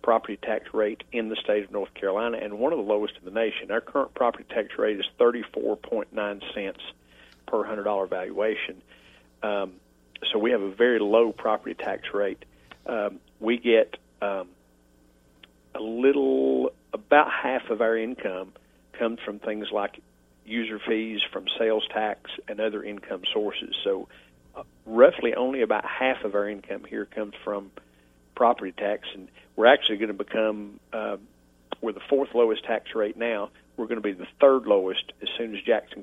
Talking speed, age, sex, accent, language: 170 wpm, 50-69, male, American, English